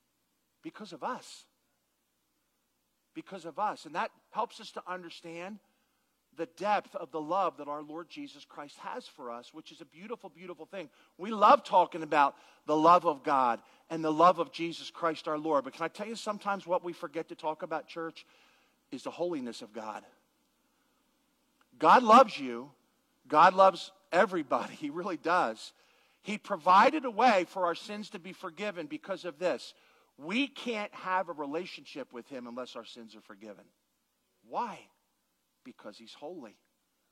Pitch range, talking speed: 145-210 Hz, 165 wpm